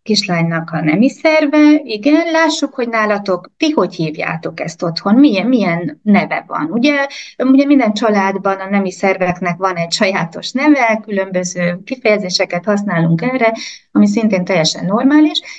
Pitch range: 195-260 Hz